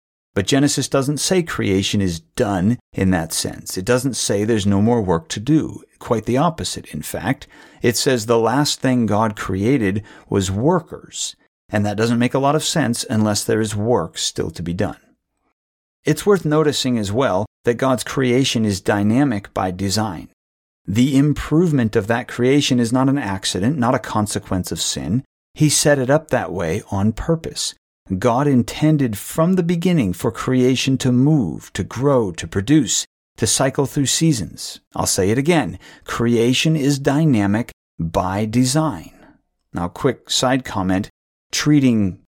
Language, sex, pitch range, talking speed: English, male, 95-130 Hz, 160 wpm